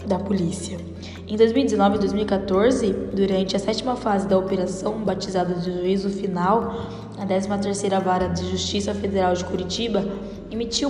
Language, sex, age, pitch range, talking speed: Portuguese, female, 10-29, 195-235 Hz, 140 wpm